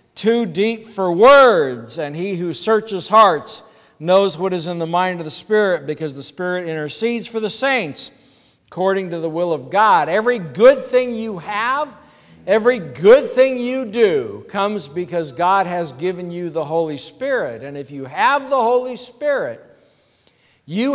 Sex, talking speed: male, 165 wpm